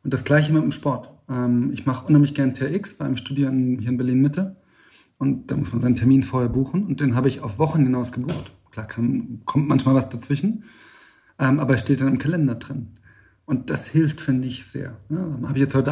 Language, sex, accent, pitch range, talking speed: German, male, German, 120-145 Hz, 215 wpm